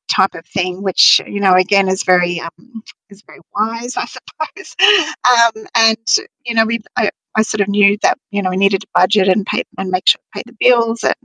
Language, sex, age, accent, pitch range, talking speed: English, female, 40-59, Australian, 200-245 Hz, 225 wpm